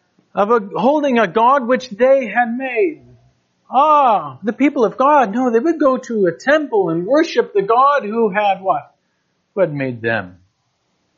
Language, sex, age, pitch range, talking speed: English, male, 40-59, 140-220 Hz, 165 wpm